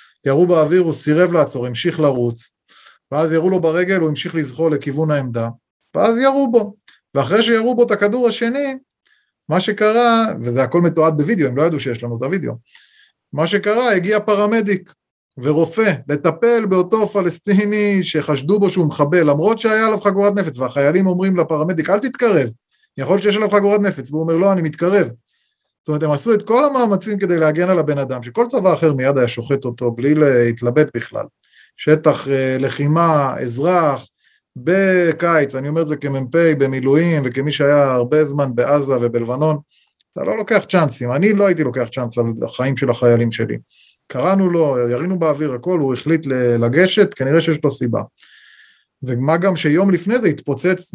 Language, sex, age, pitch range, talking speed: Hebrew, male, 30-49, 140-195 Hz, 165 wpm